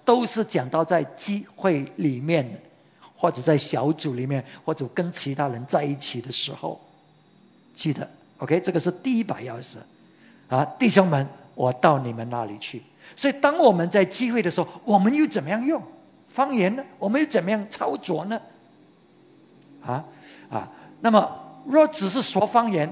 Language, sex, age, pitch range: English, male, 50-69, 150-215 Hz